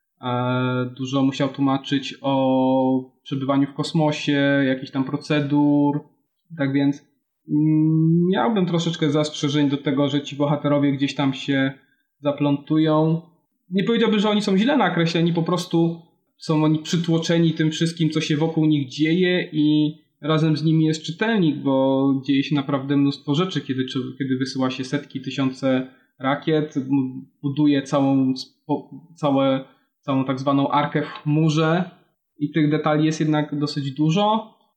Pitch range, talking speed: 140-170 Hz, 135 wpm